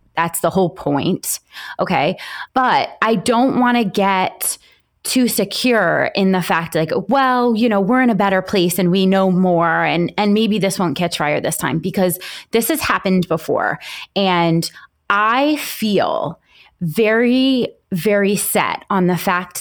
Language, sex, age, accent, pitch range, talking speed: English, female, 20-39, American, 175-235 Hz, 160 wpm